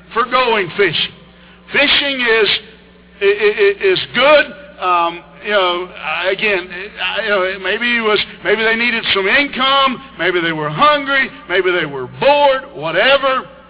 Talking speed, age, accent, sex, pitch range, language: 125 wpm, 60-79, American, male, 190-255 Hz, English